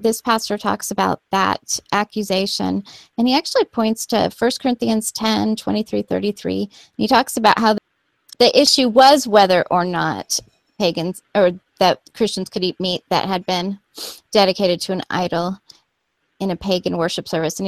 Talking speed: 165 wpm